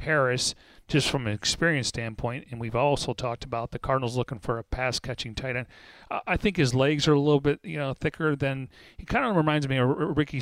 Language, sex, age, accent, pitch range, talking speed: English, male, 40-59, American, 120-145 Hz, 225 wpm